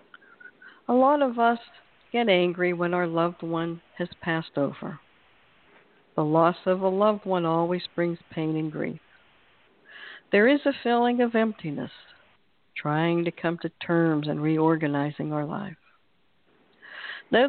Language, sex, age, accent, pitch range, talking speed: English, female, 60-79, American, 160-220 Hz, 135 wpm